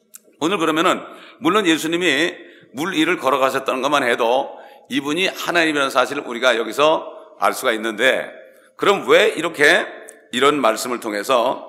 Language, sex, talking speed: English, male, 120 wpm